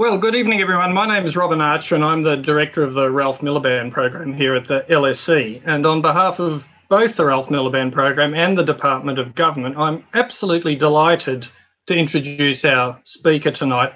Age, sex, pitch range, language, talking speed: 40-59, male, 140-190 Hz, English, 190 wpm